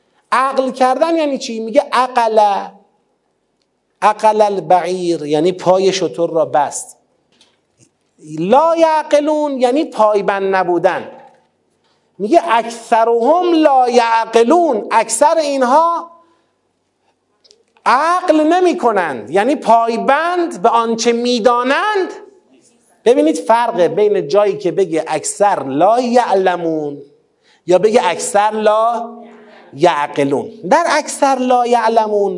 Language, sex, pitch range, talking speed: Persian, male, 200-300 Hz, 95 wpm